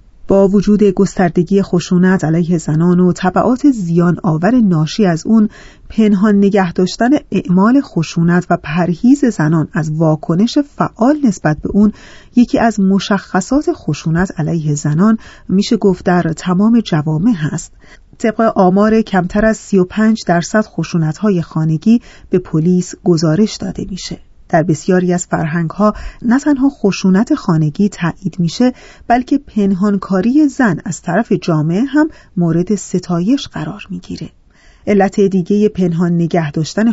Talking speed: 125 wpm